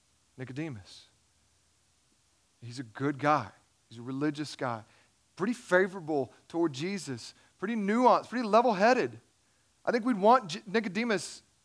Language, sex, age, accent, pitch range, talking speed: English, male, 40-59, American, 125-200 Hz, 115 wpm